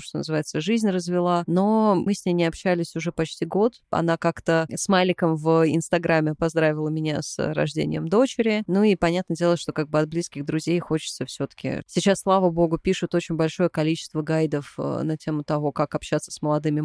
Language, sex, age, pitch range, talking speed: Russian, female, 20-39, 155-185 Hz, 180 wpm